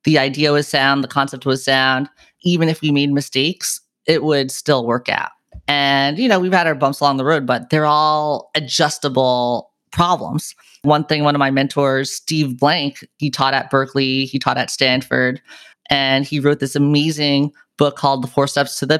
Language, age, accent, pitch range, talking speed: English, 30-49, American, 135-165 Hz, 195 wpm